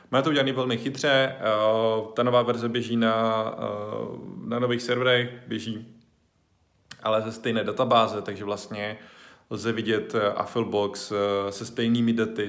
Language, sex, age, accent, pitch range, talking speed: Czech, male, 20-39, native, 95-115 Hz, 125 wpm